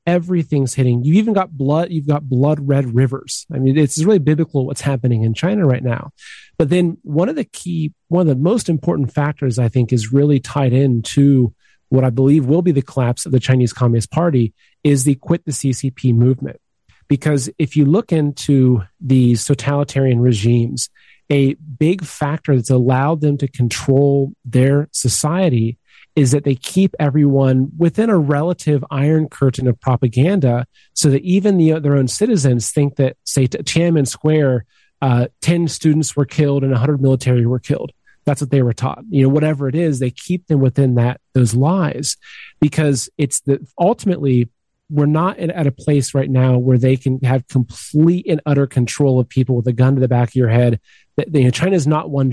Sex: male